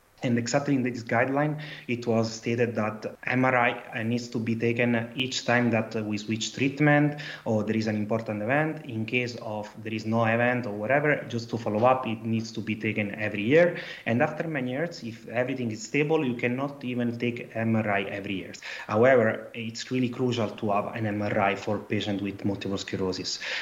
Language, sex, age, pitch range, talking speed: English, male, 30-49, 110-125 Hz, 190 wpm